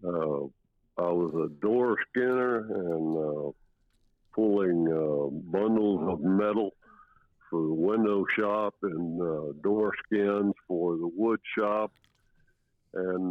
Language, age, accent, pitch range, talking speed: English, 60-79, American, 85-110 Hz, 115 wpm